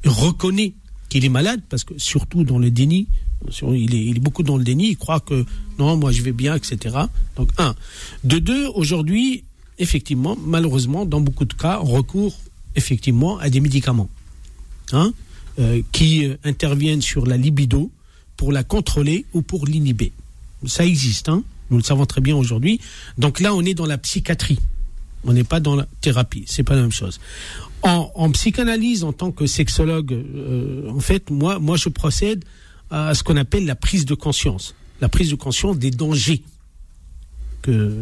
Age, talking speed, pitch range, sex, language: 50-69, 180 wpm, 115-160 Hz, male, French